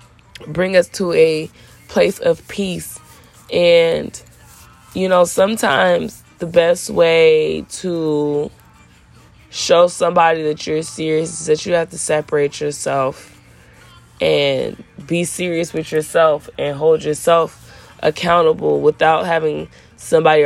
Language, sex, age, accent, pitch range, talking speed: English, female, 20-39, American, 140-175 Hz, 115 wpm